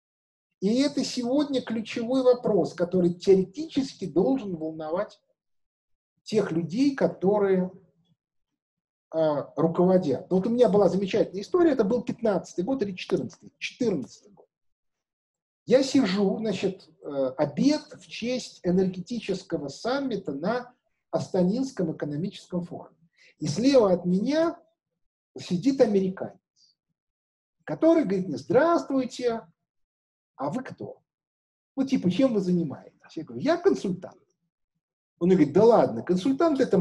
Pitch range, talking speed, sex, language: 175-255 Hz, 115 wpm, male, Russian